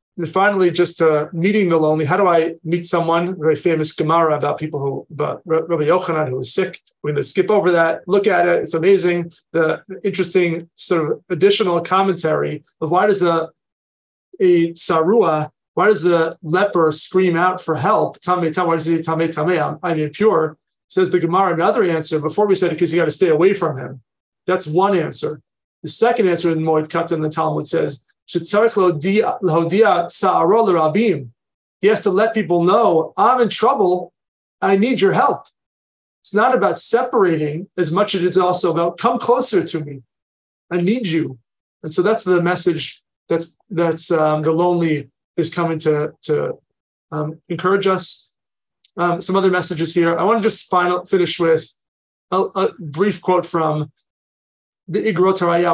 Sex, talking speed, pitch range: male, 170 wpm, 160-185 Hz